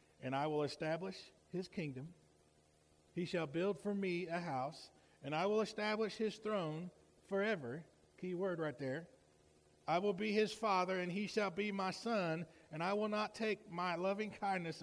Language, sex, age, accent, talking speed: English, male, 40-59, American, 175 wpm